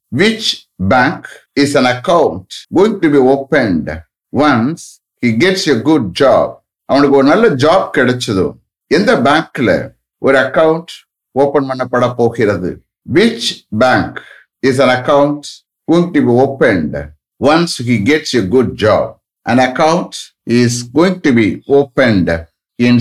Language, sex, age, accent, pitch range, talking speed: English, male, 60-79, Indian, 120-165 Hz, 135 wpm